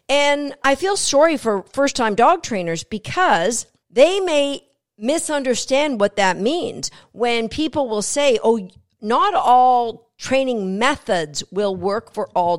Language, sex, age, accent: English, female, 50-69, American